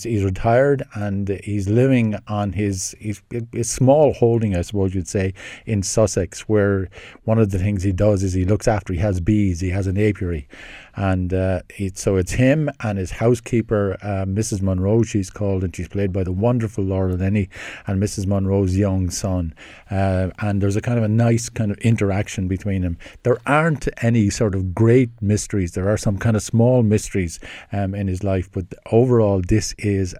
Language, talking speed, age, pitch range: English, 190 wpm, 50-69, 95-110 Hz